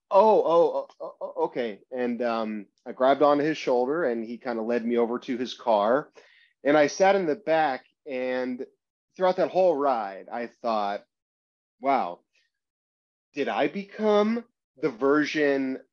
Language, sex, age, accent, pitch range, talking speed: English, male, 30-49, American, 115-150 Hz, 150 wpm